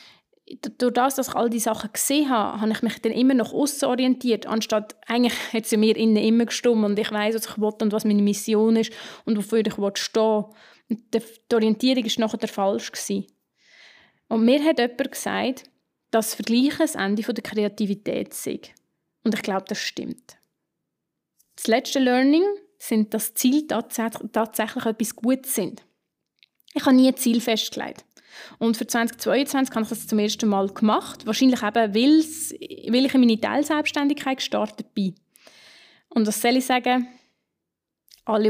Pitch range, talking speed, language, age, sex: 215-255 Hz, 165 wpm, German, 20-39, female